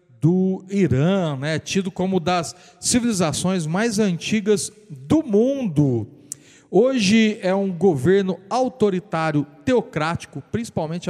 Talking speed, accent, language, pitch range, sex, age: 95 wpm, Brazilian, Portuguese, 155-200 Hz, male, 40-59